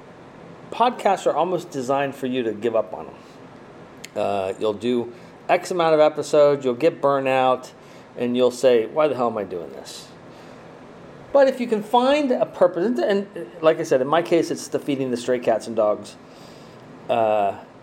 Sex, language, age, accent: male, English, 40-59, American